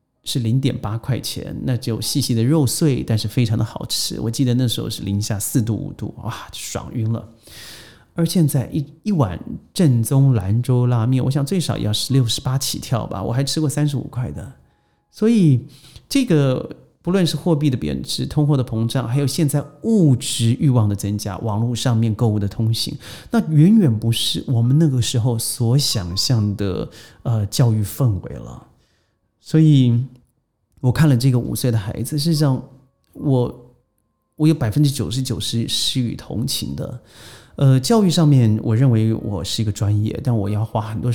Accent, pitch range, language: native, 115-145 Hz, Chinese